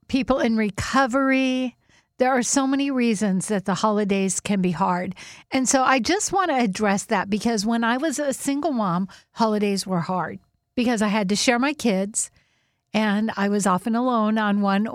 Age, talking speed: 50-69, 185 wpm